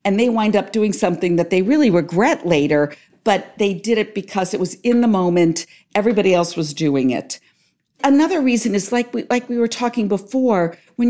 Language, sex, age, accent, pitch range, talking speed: English, female, 50-69, American, 175-245 Hz, 200 wpm